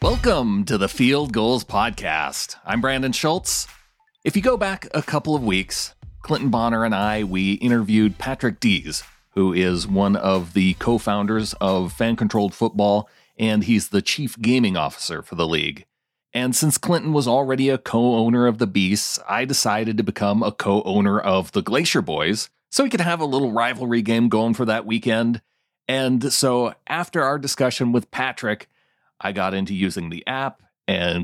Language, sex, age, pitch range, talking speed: English, male, 30-49, 110-140 Hz, 175 wpm